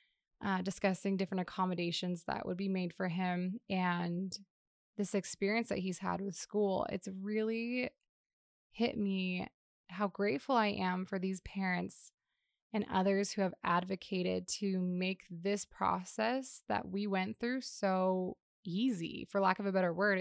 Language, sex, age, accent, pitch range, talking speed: English, female, 20-39, American, 180-200 Hz, 150 wpm